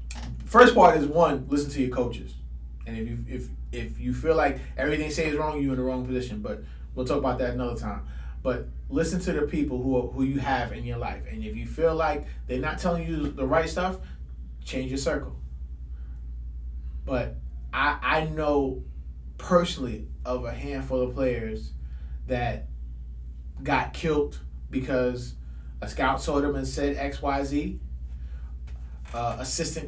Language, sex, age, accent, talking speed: English, male, 20-39, American, 170 wpm